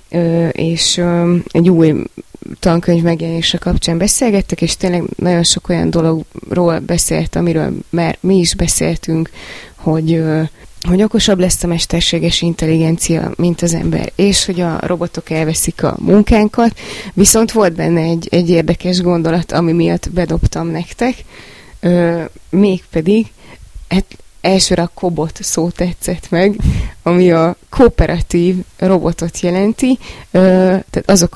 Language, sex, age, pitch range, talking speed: Hungarian, female, 20-39, 170-190 Hz, 120 wpm